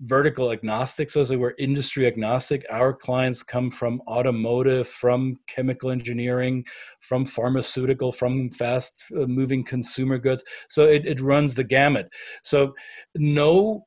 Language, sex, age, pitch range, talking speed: English, male, 40-59, 125-145 Hz, 140 wpm